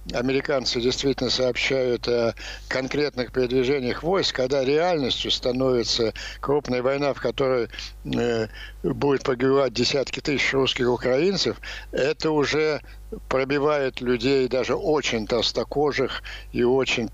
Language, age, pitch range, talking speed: Ukrainian, 60-79, 115-140 Hz, 105 wpm